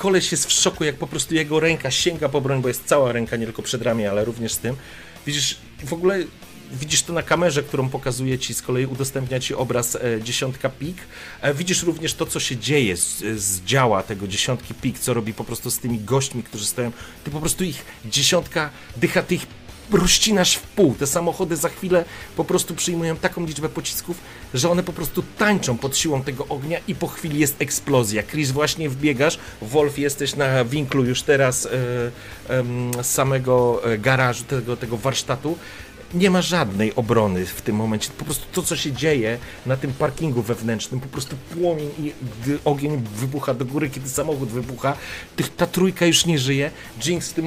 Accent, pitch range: native, 125-160 Hz